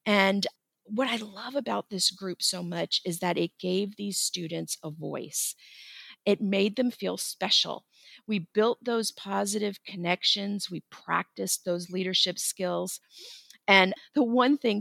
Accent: American